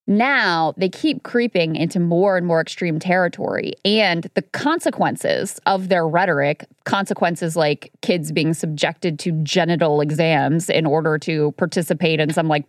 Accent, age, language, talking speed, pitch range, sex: American, 20-39, English, 145 wpm, 165-210 Hz, female